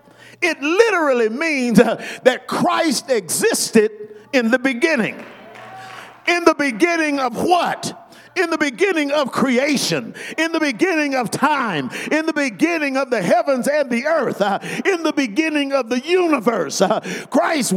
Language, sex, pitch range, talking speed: English, male, 240-305 Hz, 145 wpm